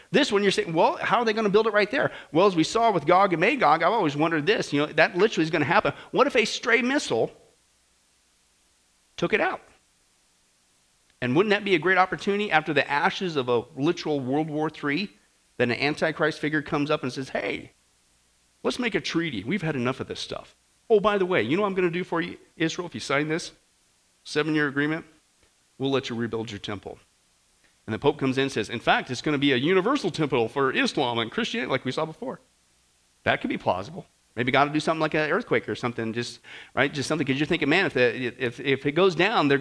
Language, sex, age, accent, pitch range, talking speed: English, male, 40-59, American, 130-185 Hz, 240 wpm